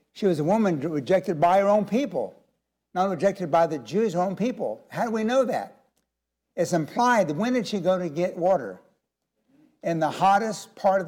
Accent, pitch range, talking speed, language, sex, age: American, 155-200 Hz, 200 wpm, English, male, 60-79